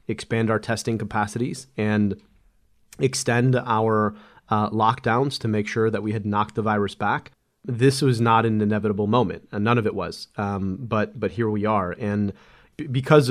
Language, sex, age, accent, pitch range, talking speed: English, male, 30-49, American, 105-115 Hz, 175 wpm